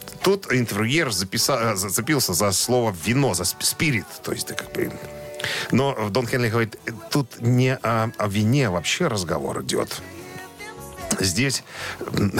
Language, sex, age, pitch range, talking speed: Russian, male, 40-59, 105-135 Hz, 130 wpm